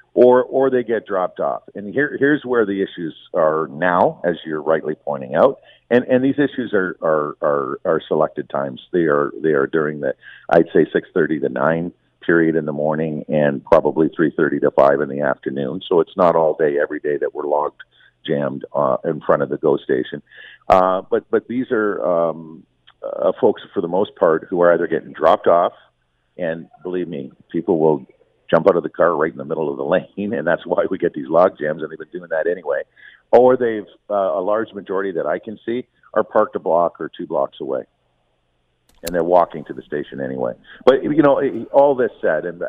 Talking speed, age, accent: 215 wpm, 50-69, American